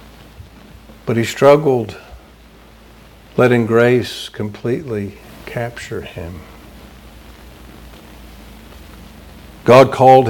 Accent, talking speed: American, 60 wpm